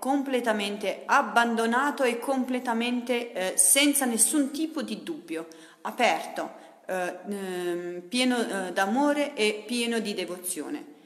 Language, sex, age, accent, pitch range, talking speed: Italian, female, 40-59, native, 185-250 Hz, 110 wpm